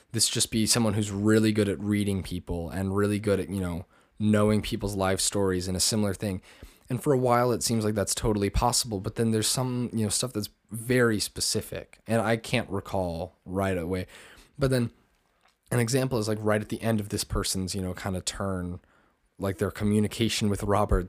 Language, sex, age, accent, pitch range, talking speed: English, male, 20-39, American, 95-115 Hz, 210 wpm